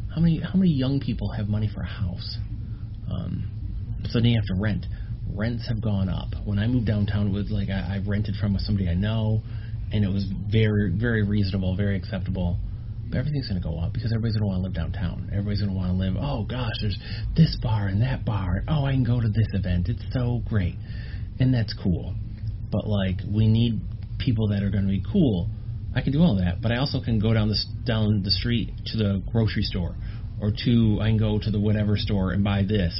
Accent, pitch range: American, 100-110 Hz